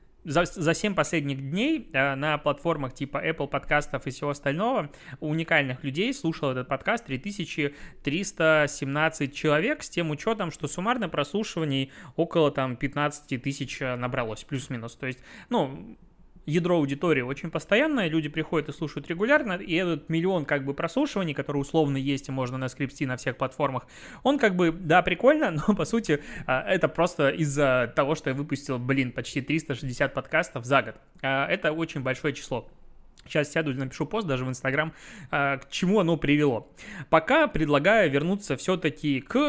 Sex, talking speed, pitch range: male, 160 wpm, 135-175 Hz